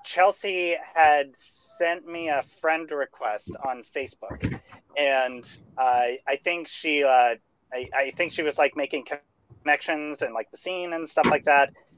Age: 30-49